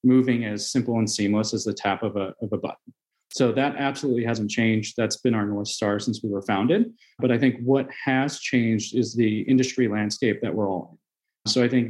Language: English